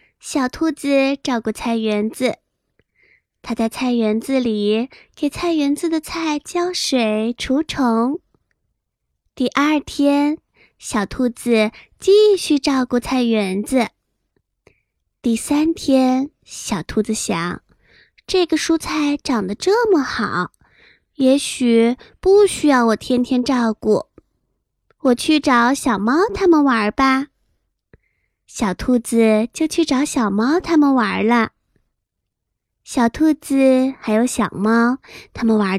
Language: Chinese